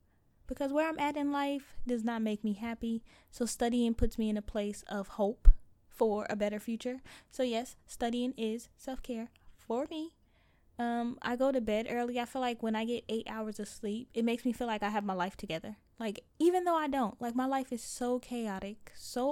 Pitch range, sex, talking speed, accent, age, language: 200-245 Hz, female, 215 wpm, American, 10-29, English